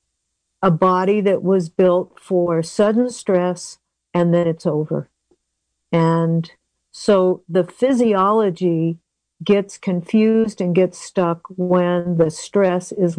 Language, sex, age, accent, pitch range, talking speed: English, female, 60-79, American, 165-195 Hz, 115 wpm